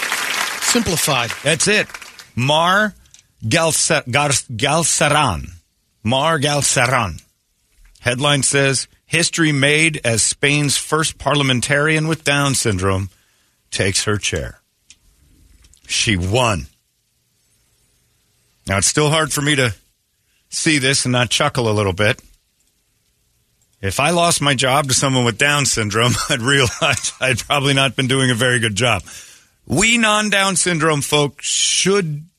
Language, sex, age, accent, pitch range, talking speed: English, male, 50-69, American, 110-150 Hz, 120 wpm